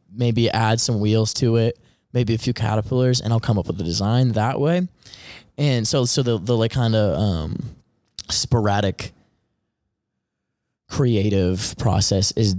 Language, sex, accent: English, male, American